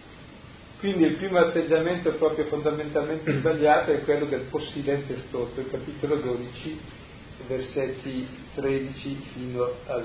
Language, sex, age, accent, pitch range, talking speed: Italian, male, 40-59, native, 130-165 Hz, 115 wpm